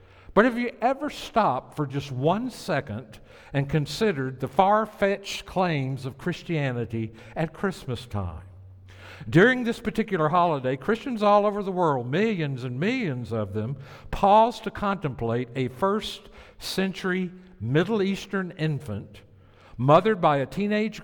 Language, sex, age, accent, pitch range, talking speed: English, male, 60-79, American, 115-185 Hz, 135 wpm